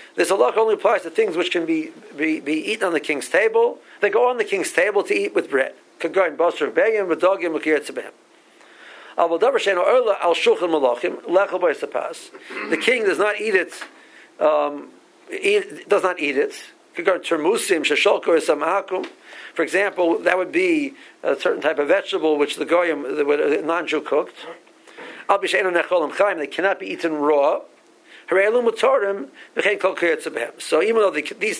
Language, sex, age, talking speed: English, male, 50-69, 120 wpm